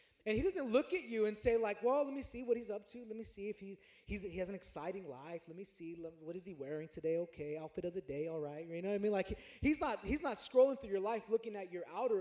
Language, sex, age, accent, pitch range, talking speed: English, male, 20-39, American, 205-285 Hz, 305 wpm